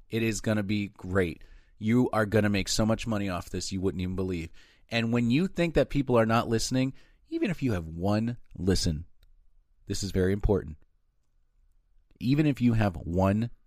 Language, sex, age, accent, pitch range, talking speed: English, male, 30-49, American, 90-125 Hz, 185 wpm